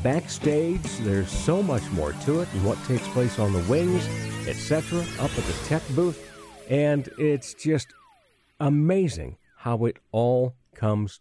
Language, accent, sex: English, American, male